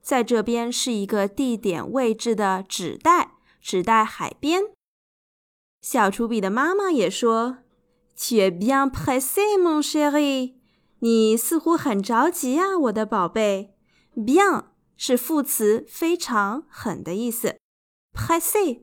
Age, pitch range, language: 20-39, 215-295 Hz, Chinese